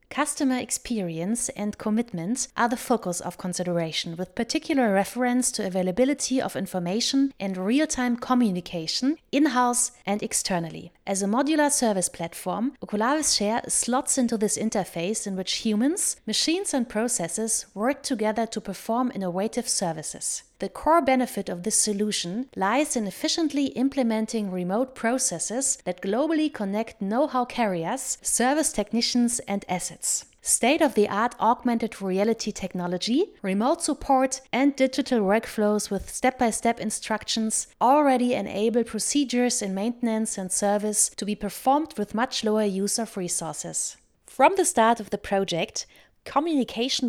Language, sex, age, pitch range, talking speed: English, female, 30-49, 200-255 Hz, 130 wpm